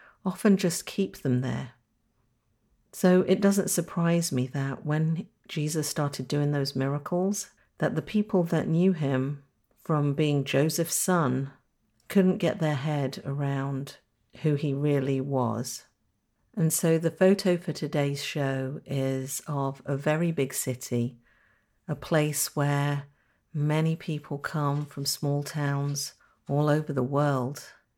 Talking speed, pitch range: 135 wpm, 130-150 Hz